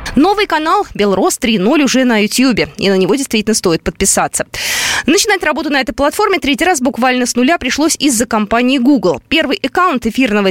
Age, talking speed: 20-39, 170 wpm